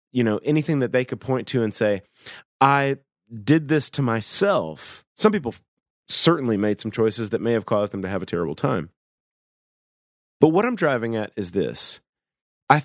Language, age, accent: English, 30-49, American